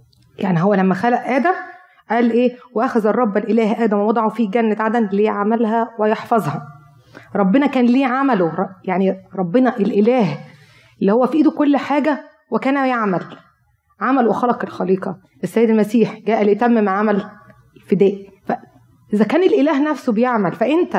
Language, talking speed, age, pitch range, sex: Arabic, 135 wpm, 20-39, 180-245 Hz, female